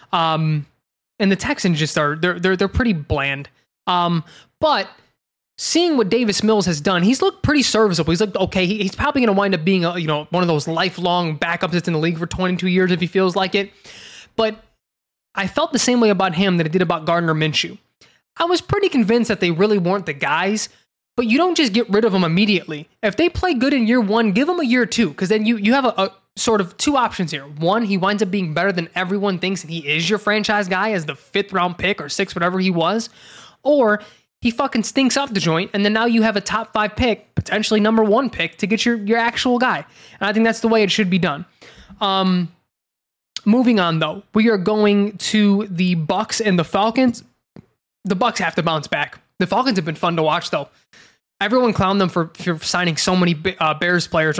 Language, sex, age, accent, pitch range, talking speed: English, male, 20-39, American, 175-225 Hz, 230 wpm